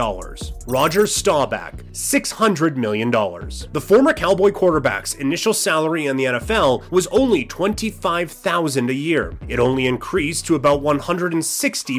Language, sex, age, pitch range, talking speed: English, male, 30-49, 140-195 Hz, 120 wpm